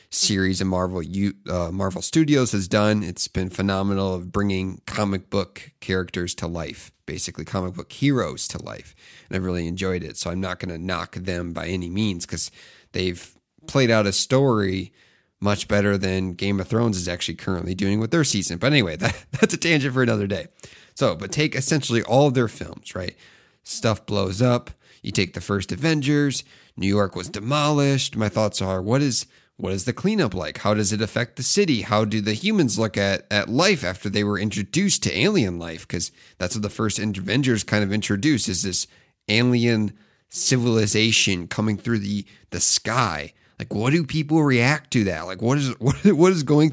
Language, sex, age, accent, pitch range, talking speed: English, male, 30-49, American, 95-125 Hz, 195 wpm